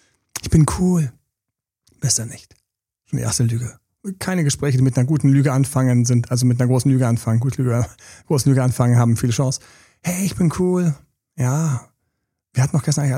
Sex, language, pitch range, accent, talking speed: male, German, 120-155 Hz, German, 185 wpm